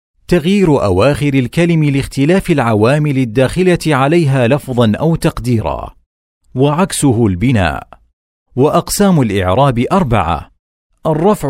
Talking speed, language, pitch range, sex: 85 wpm, Arabic, 95-150 Hz, male